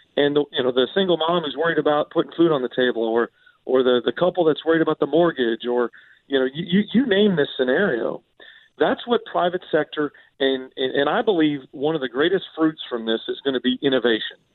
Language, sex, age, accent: English, male, 40-59, American